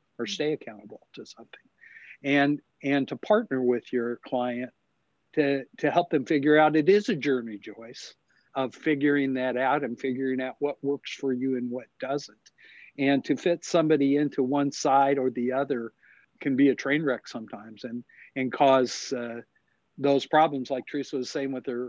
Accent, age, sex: American, 50-69, male